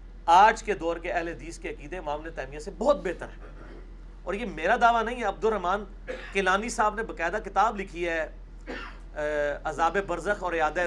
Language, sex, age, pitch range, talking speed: Urdu, male, 40-59, 170-215 Hz, 180 wpm